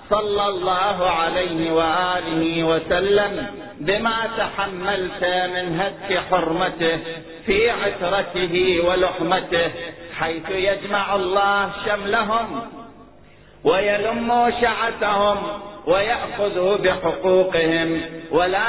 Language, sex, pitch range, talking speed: Arabic, male, 180-205 Hz, 70 wpm